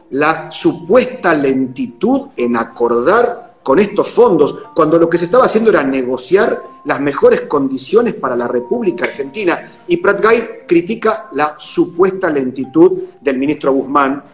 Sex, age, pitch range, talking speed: male, 40-59, 150-255 Hz, 135 wpm